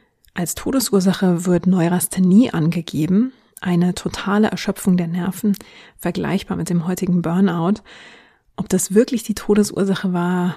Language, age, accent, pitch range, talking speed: German, 30-49, German, 175-210 Hz, 120 wpm